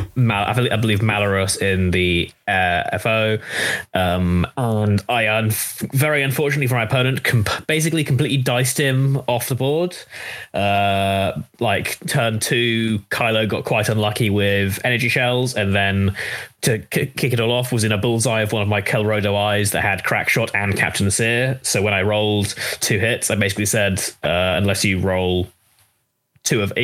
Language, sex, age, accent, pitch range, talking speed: English, male, 20-39, British, 100-125 Hz, 170 wpm